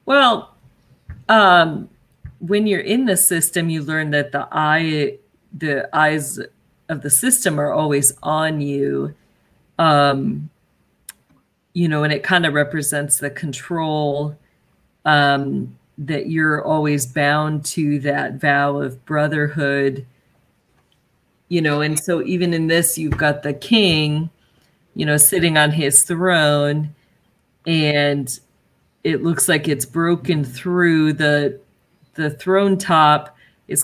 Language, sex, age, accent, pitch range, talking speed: English, female, 40-59, American, 145-165 Hz, 125 wpm